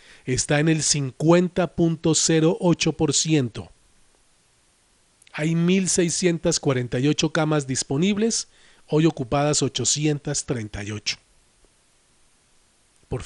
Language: Spanish